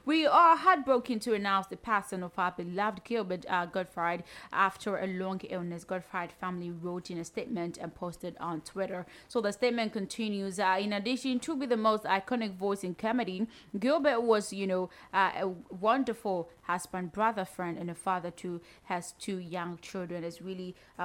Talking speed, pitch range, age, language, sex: 180 wpm, 175-225 Hz, 20-39, English, female